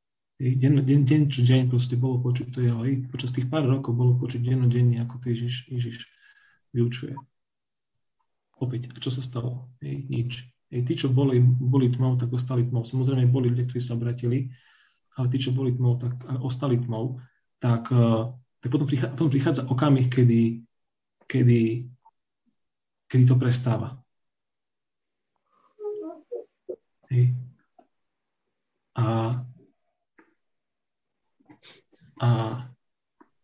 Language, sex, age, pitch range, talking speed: Slovak, male, 40-59, 125-135 Hz, 115 wpm